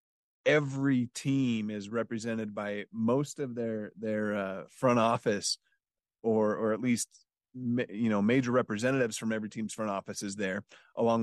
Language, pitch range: English, 110-130 Hz